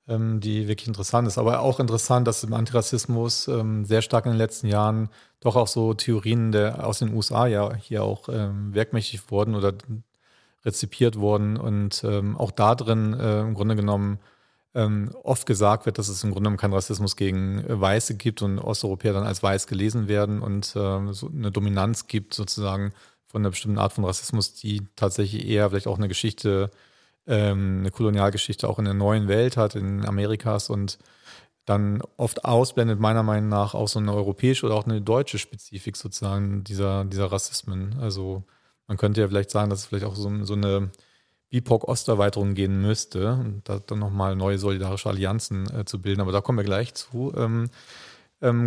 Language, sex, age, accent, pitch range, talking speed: German, male, 40-59, German, 100-115 Hz, 180 wpm